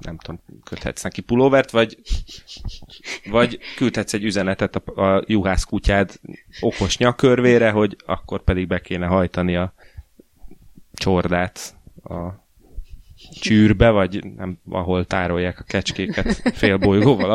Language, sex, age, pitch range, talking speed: Hungarian, male, 20-39, 90-105 Hz, 110 wpm